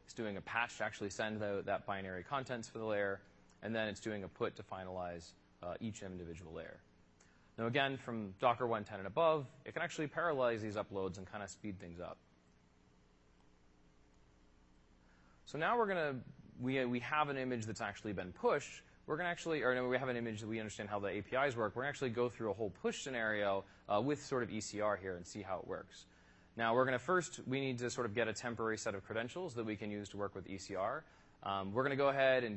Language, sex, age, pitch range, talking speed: English, male, 30-49, 95-130 Hz, 230 wpm